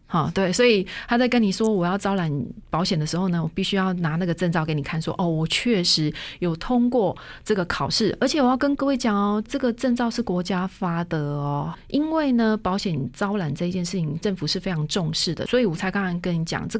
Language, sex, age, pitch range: Chinese, female, 30-49, 160-215 Hz